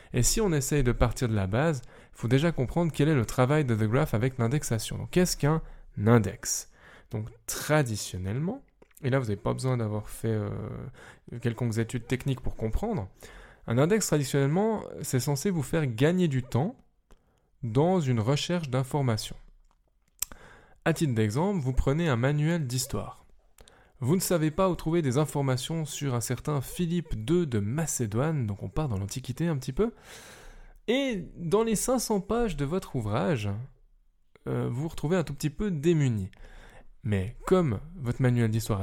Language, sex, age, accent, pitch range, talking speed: French, male, 10-29, French, 115-160 Hz, 165 wpm